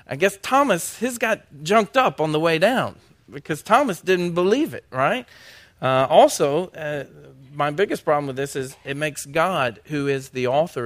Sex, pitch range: male, 115-155 Hz